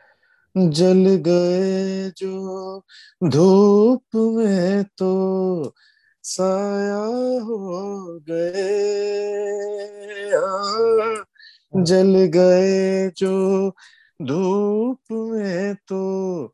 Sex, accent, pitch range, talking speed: male, native, 155-205 Hz, 60 wpm